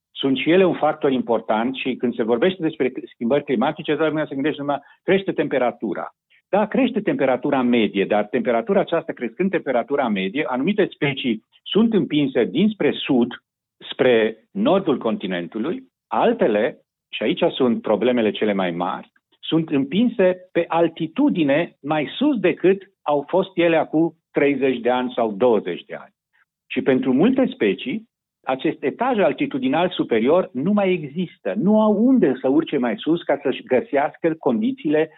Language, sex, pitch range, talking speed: Romanian, male, 130-190 Hz, 150 wpm